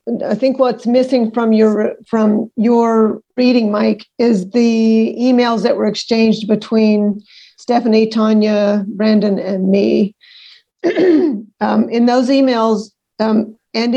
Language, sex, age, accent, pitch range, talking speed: English, female, 50-69, American, 200-230 Hz, 120 wpm